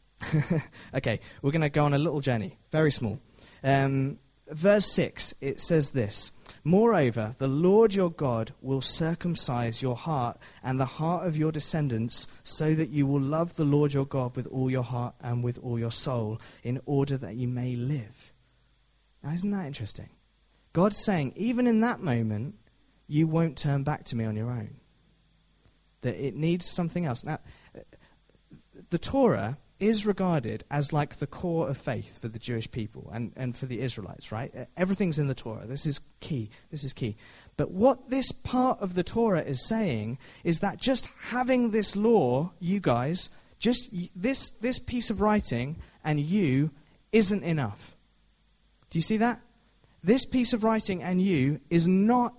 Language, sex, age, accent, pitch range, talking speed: English, male, 20-39, British, 125-185 Hz, 170 wpm